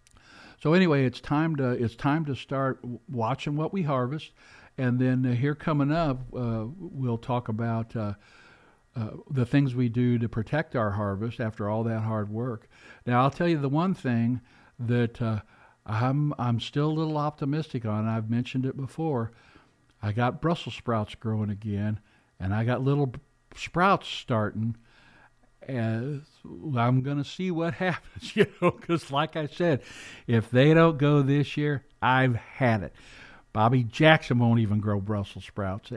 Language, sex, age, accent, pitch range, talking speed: English, male, 60-79, American, 115-145 Hz, 165 wpm